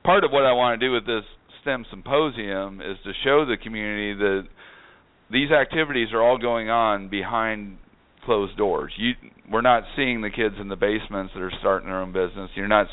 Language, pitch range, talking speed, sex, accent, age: English, 100-120 Hz, 200 wpm, male, American, 40-59